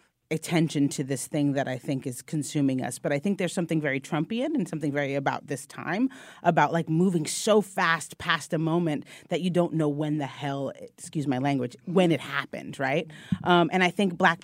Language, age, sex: English, 30-49, female